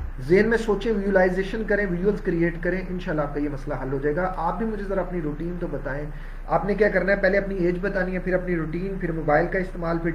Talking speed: 255 wpm